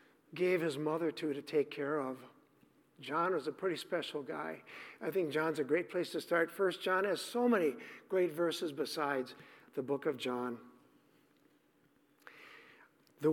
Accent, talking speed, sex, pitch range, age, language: American, 160 wpm, male, 155-220 Hz, 50-69, English